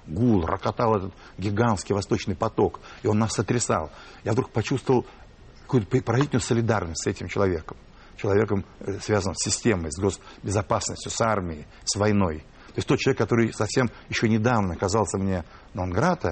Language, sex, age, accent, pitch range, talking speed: Russian, male, 60-79, native, 95-120 Hz, 145 wpm